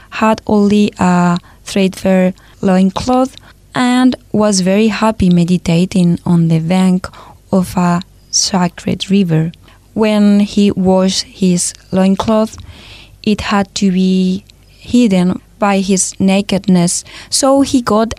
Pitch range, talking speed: 185-220 Hz, 110 wpm